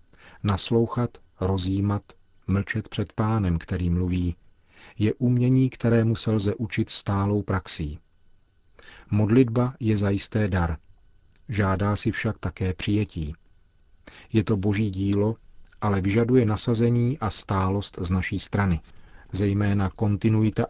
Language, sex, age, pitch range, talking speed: Czech, male, 40-59, 95-110 Hz, 110 wpm